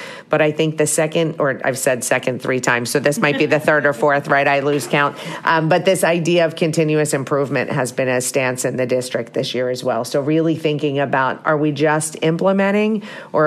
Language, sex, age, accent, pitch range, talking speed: English, female, 40-59, American, 145-170 Hz, 225 wpm